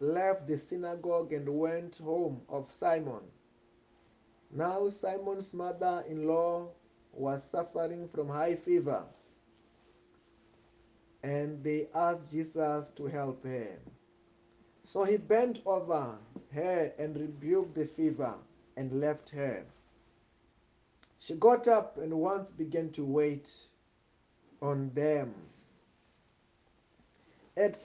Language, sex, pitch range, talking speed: English, male, 145-195 Hz, 100 wpm